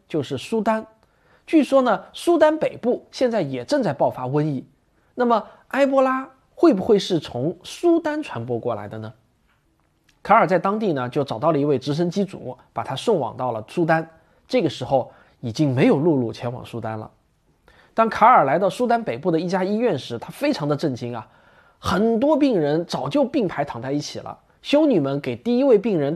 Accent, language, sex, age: native, Chinese, male, 20-39